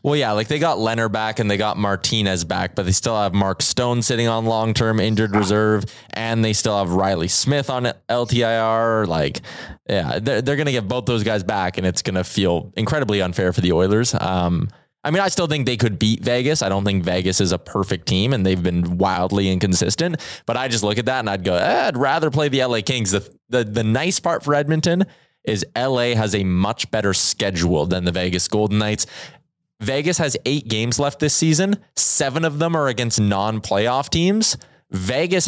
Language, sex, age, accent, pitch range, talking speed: English, male, 20-39, American, 95-135 Hz, 210 wpm